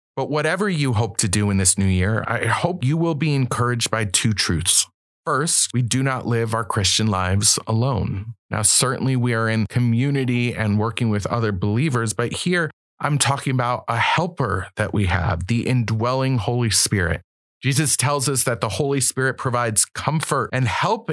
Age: 30-49